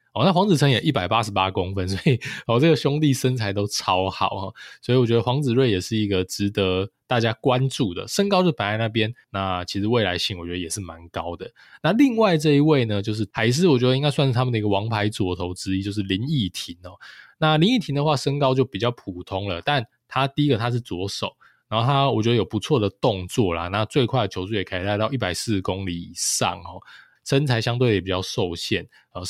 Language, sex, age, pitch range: Chinese, male, 20-39, 95-130 Hz